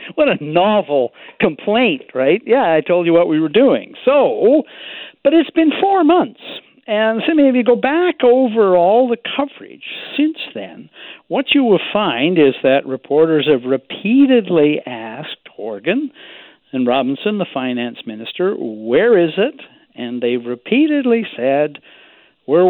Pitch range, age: 140-235 Hz, 60-79